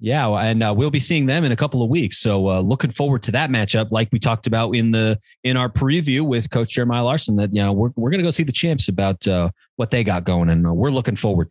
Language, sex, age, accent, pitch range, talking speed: English, male, 30-49, American, 110-155 Hz, 275 wpm